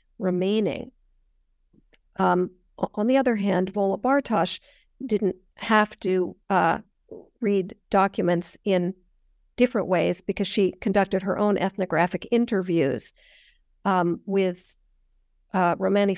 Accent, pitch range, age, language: American, 175-200 Hz, 50-69, English